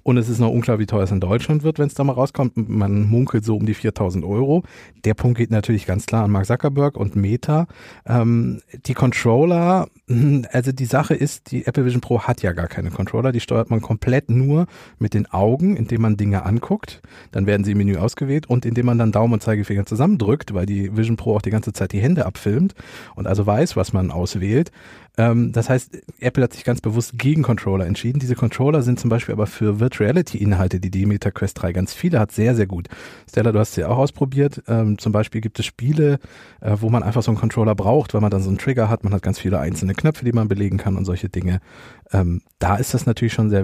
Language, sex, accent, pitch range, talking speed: German, male, German, 105-135 Hz, 235 wpm